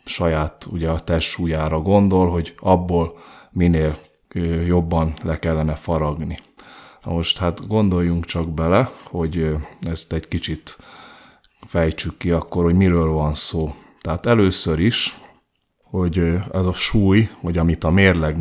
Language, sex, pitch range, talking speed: Hungarian, male, 80-95 Hz, 135 wpm